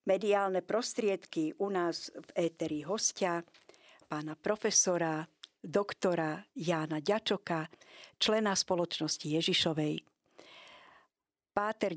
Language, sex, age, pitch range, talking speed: Slovak, female, 50-69, 165-205 Hz, 80 wpm